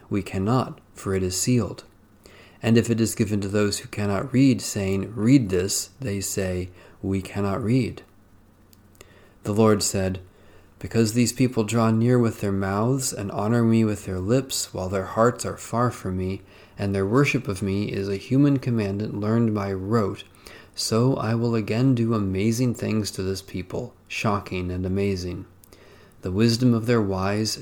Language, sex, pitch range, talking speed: English, male, 95-115 Hz, 170 wpm